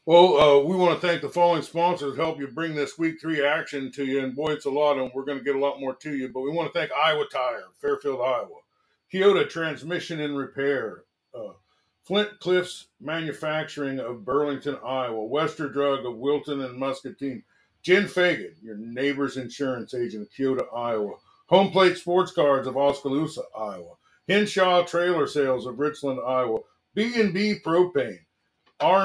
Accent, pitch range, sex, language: American, 135-180 Hz, male, English